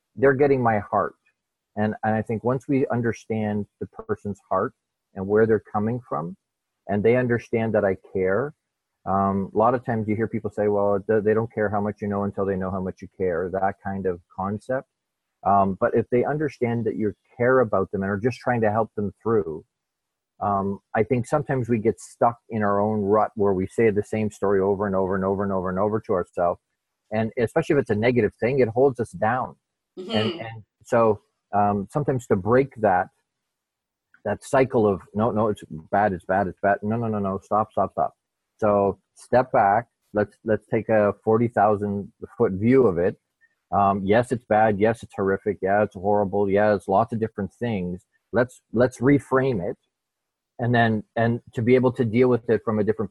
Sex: male